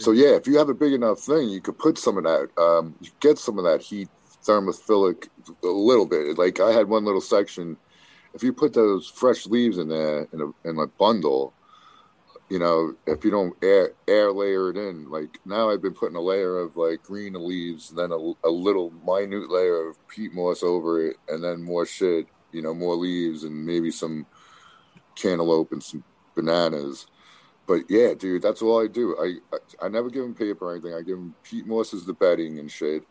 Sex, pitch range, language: male, 85-105 Hz, English